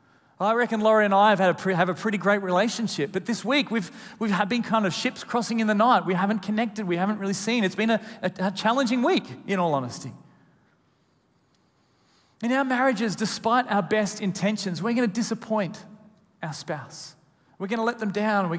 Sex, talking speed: male, 205 wpm